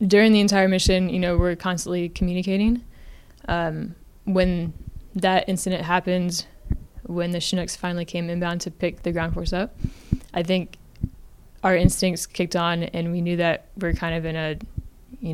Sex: female